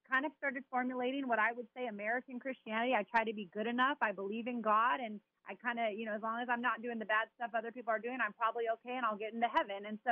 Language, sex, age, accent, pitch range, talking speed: English, female, 30-49, American, 215-260 Hz, 290 wpm